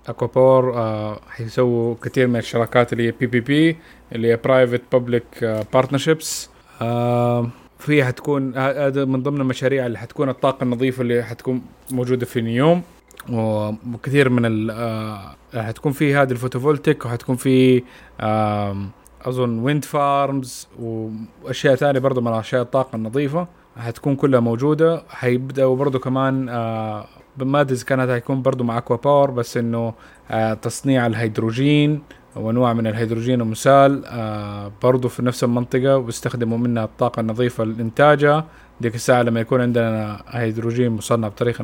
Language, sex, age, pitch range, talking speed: Arabic, male, 20-39, 115-135 Hz, 135 wpm